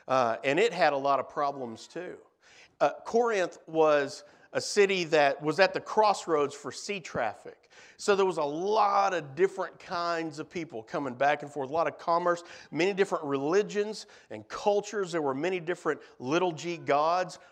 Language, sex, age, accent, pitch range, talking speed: English, male, 50-69, American, 150-195 Hz, 180 wpm